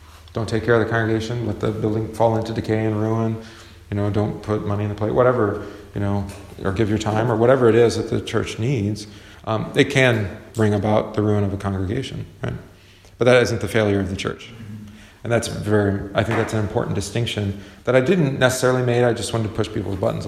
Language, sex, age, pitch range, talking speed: English, male, 40-59, 100-115 Hz, 225 wpm